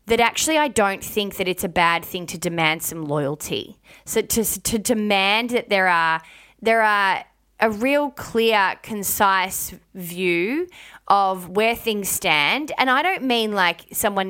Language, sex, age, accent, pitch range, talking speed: English, female, 20-39, Australian, 180-220 Hz, 160 wpm